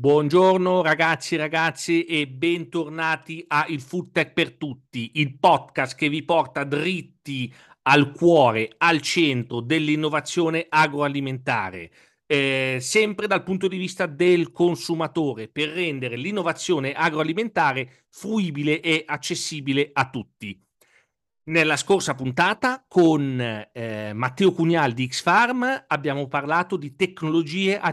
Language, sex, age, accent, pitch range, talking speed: Italian, male, 40-59, native, 135-175 Hz, 120 wpm